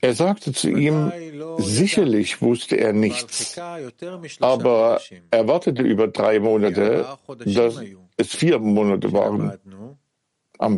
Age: 60-79